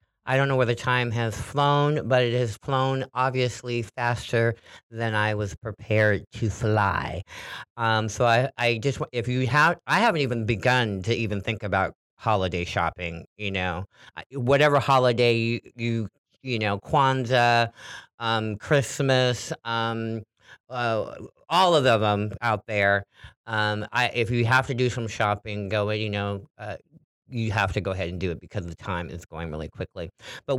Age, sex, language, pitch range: 40-59, male, English, 105-135 Hz